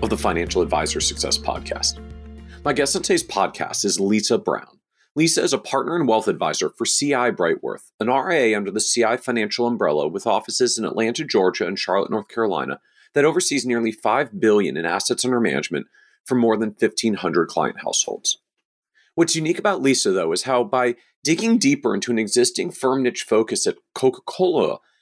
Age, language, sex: 40-59, English, male